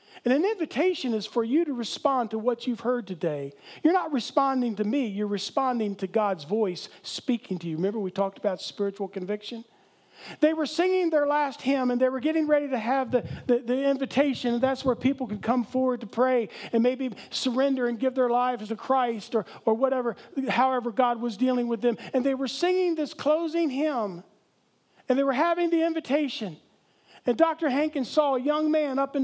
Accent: American